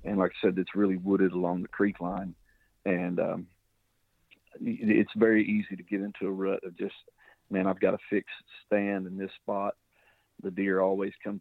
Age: 50-69